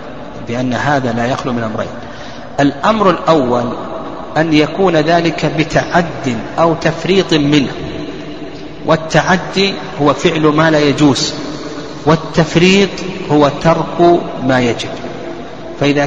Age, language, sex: 50-69, Arabic, male